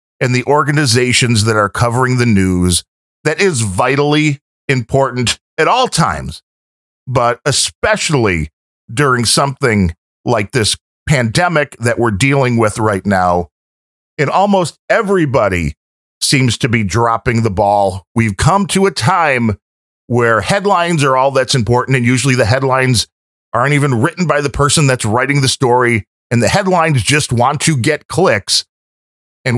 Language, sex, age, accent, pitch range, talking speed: English, male, 40-59, American, 100-145 Hz, 145 wpm